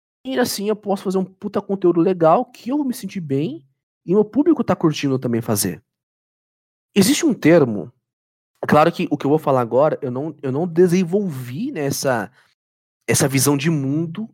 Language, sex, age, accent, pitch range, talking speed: Portuguese, male, 20-39, Brazilian, 125-180 Hz, 190 wpm